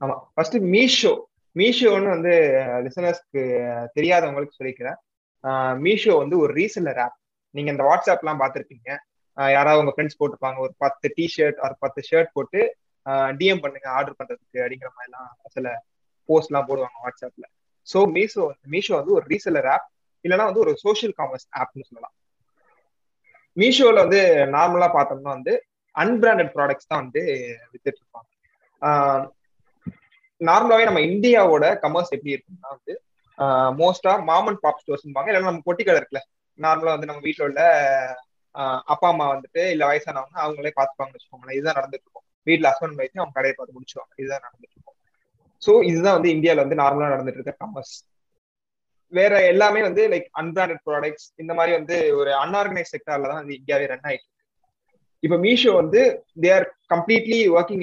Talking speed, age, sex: 140 wpm, 20-39, male